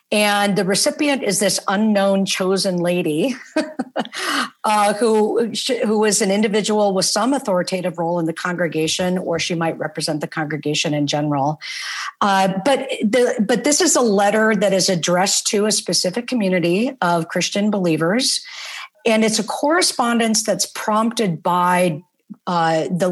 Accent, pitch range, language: American, 165-215 Hz, English